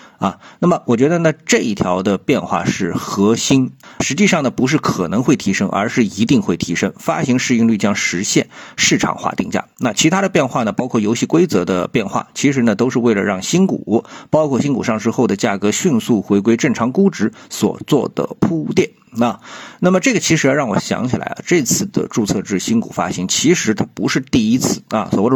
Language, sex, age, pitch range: Chinese, male, 50-69, 105-175 Hz